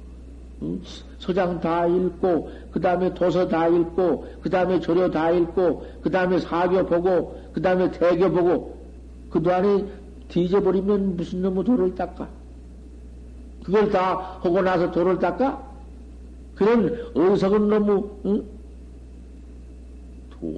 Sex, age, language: male, 60-79, Korean